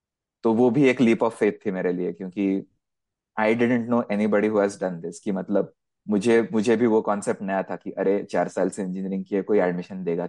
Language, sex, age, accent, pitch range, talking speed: Hindi, male, 20-39, native, 95-105 Hz, 205 wpm